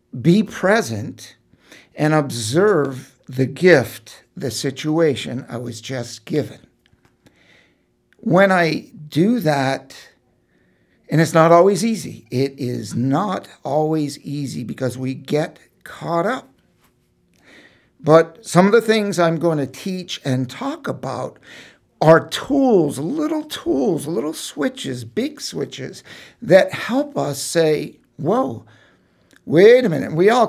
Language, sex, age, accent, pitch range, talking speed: English, male, 60-79, American, 140-185 Hz, 120 wpm